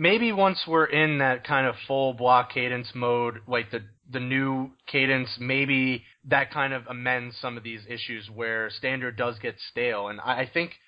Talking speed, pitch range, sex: 190 wpm, 120-145 Hz, male